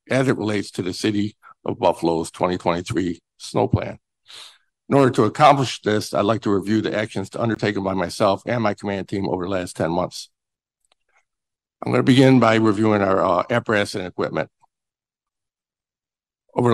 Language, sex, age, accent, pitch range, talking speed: English, male, 60-79, American, 95-110 Hz, 165 wpm